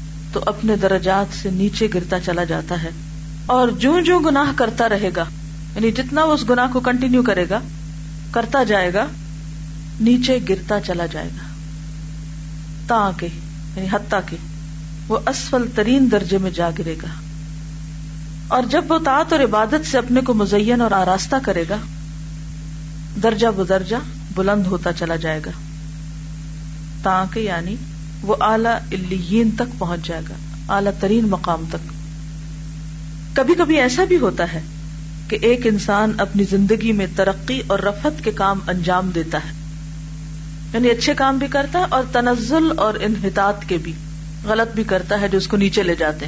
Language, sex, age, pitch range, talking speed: Urdu, female, 40-59, 155-220 Hz, 160 wpm